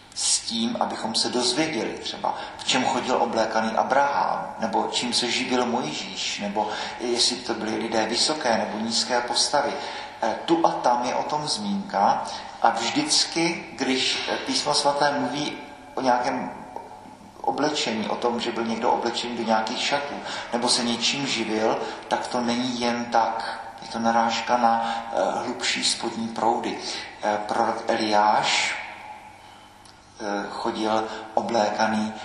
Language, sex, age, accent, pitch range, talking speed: Czech, male, 50-69, native, 110-120 Hz, 130 wpm